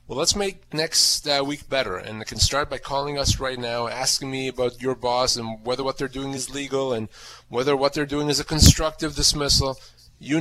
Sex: male